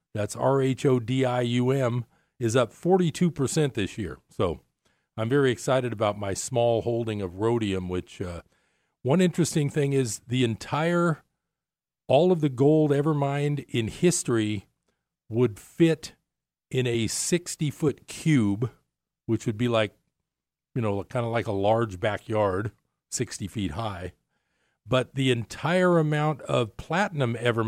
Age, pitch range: 40-59, 110-145 Hz